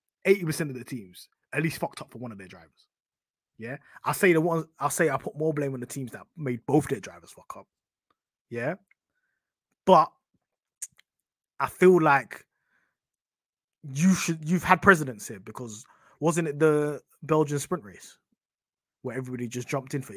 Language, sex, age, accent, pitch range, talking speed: English, male, 20-39, British, 120-170 Hz, 175 wpm